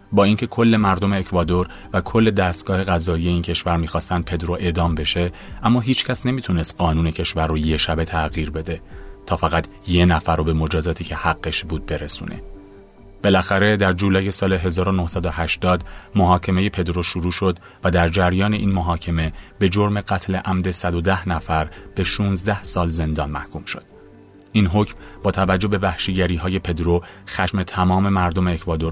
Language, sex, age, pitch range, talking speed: Persian, male, 30-49, 85-100 Hz, 150 wpm